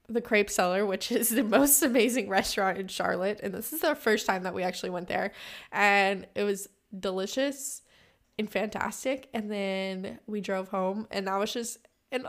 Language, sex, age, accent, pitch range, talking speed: English, female, 10-29, American, 195-235 Hz, 185 wpm